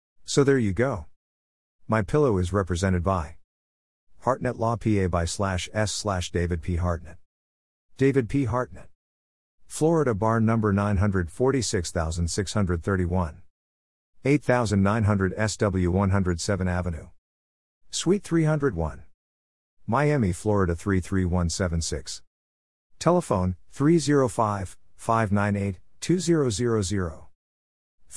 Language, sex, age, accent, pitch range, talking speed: English, male, 50-69, American, 85-115 Hz, 80 wpm